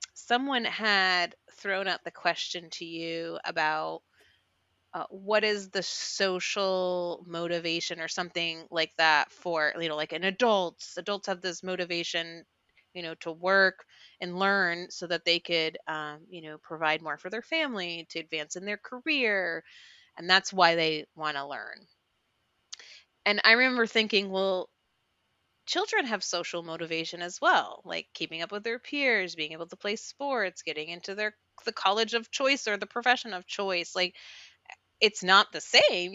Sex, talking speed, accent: female, 165 wpm, American